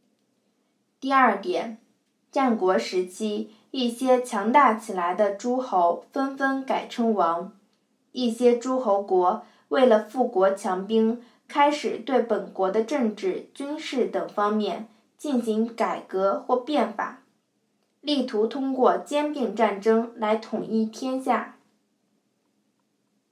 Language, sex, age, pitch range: Chinese, female, 20-39, 215-260 Hz